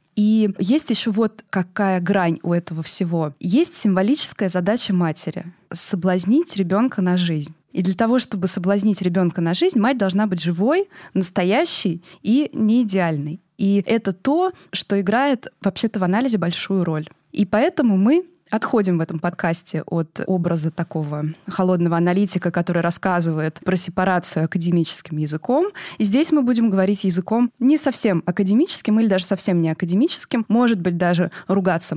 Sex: female